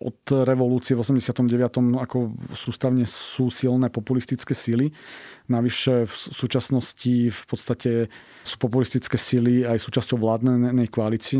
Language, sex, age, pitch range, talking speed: Slovak, male, 40-59, 115-135 Hz, 115 wpm